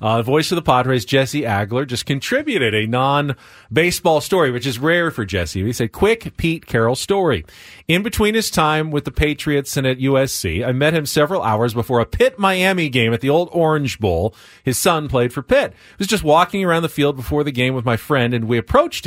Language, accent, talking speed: English, American, 215 wpm